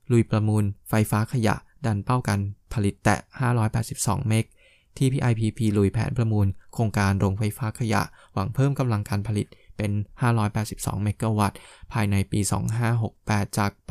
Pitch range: 100-120 Hz